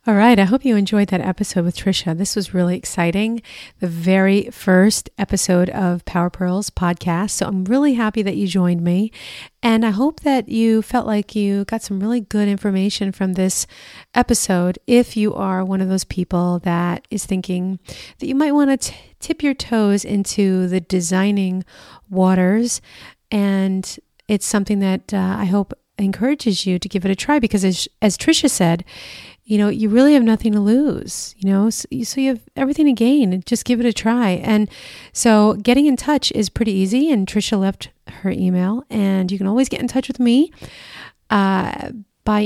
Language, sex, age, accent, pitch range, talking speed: English, female, 40-59, American, 190-235 Hz, 190 wpm